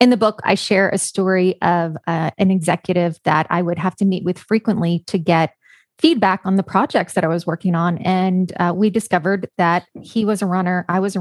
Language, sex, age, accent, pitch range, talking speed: English, female, 20-39, American, 185-230 Hz, 225 wpm